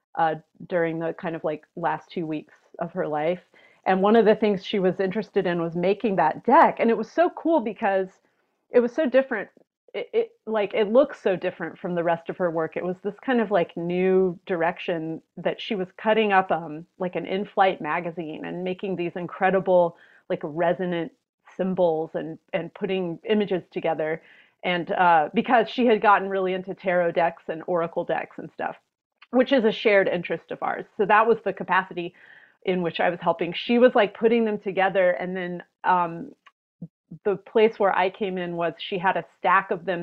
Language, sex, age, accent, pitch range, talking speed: English, female, 30-49, American, 175-215 Hz, 200 wpm